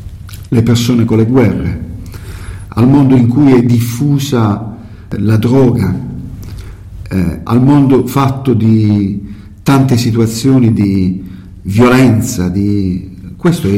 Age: 50-69